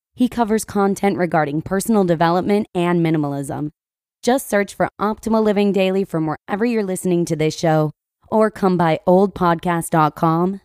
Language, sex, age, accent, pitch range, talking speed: English, female, 20-39, American, 155-205 Hz, 140 wpm